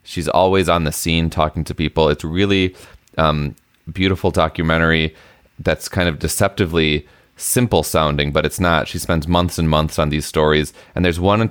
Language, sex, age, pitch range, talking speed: English, male, 30-49, 80-90 Hz, 175 wpm